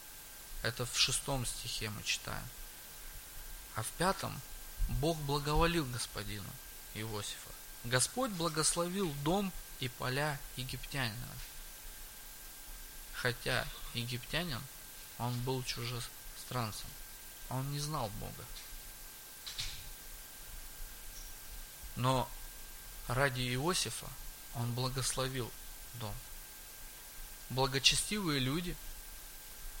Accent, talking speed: native, 70 wpm